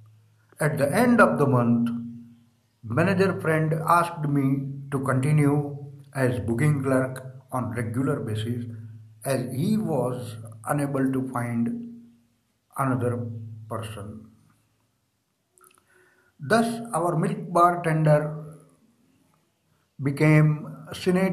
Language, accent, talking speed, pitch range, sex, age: Hindi, native, 95 wpm, 120-155 Hz, male, 60-79